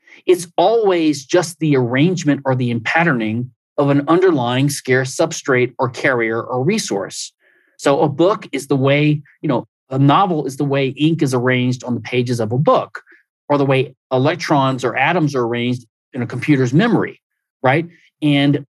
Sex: male